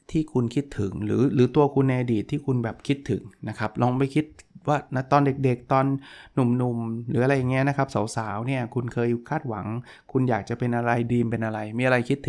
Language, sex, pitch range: Thai, male, 120-150 Hz